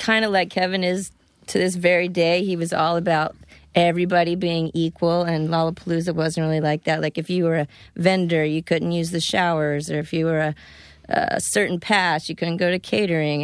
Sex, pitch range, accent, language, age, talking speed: female, 160-185 Hz, American, English, 30-49, 205 wpm